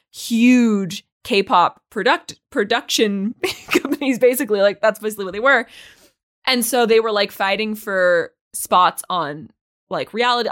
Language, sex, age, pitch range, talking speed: English, female, 20-39, 195-245 Hz, 130 wpm